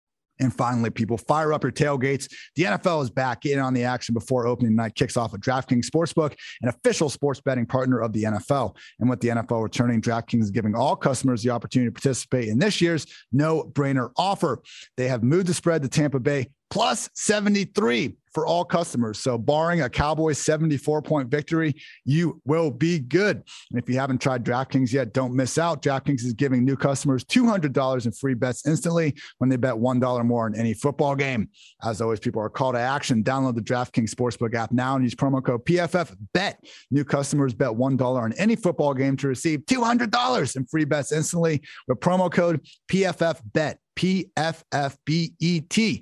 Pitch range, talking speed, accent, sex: 125-160 Hz, 195 wpm, American, male